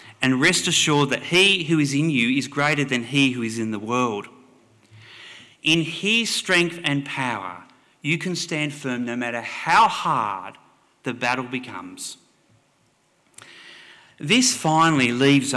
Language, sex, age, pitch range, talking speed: English, male, 30-49, 115-155 Hz, 145 wpm